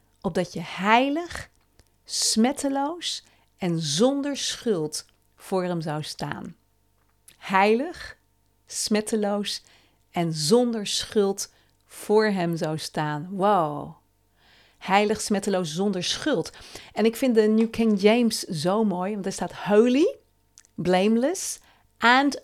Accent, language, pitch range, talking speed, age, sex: Dutch, Dutch, 170-225 Hz, 105 wpm, 40-59, female